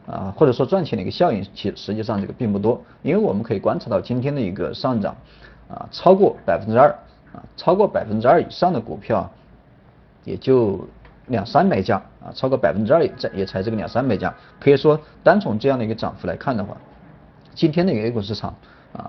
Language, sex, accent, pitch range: Chinese, male, native, 105-130 Hz